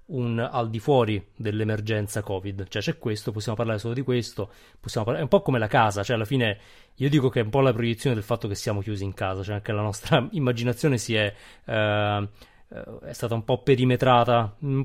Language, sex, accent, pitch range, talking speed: Italian, male, native, 105-135 Hz, 215 wpm